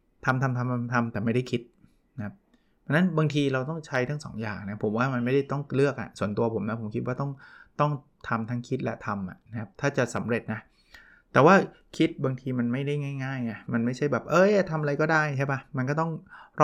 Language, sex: Thai, male